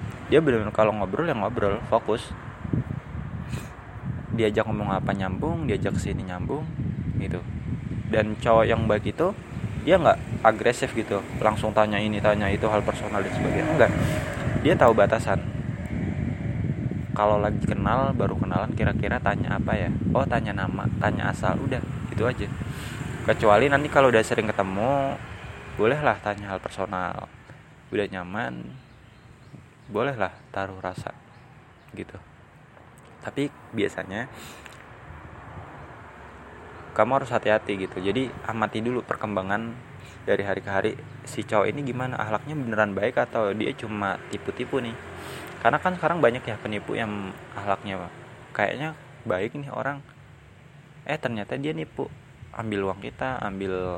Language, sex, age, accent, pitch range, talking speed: Indonesian, male, 20-39, native, 100-130 Hz, 130 wpm